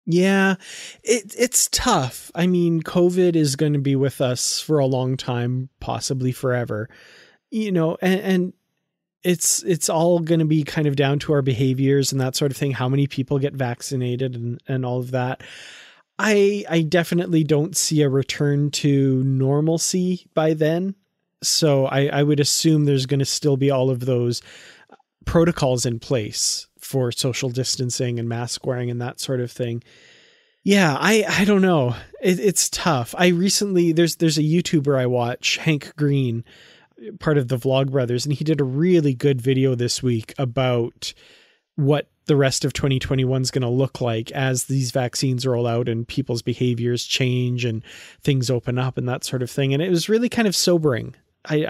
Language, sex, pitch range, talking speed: English, male, 130-165 Hz, 180 wpm